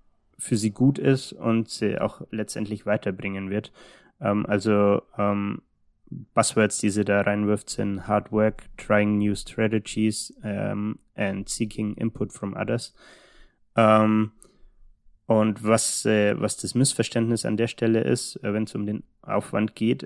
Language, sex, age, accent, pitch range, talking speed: German, male, 20-39, German, 105-120 Hz, 140 wpm